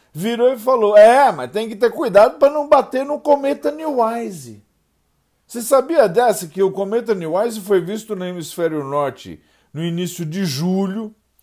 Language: Portuguese